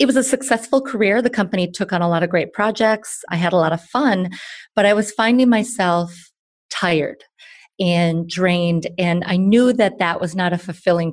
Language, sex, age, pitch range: English, female, 30-49, 170-210 Hz